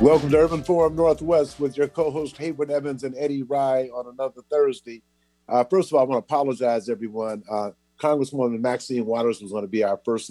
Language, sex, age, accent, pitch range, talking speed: English, male, 50-69, American, 100-120 Hz, 205 wpm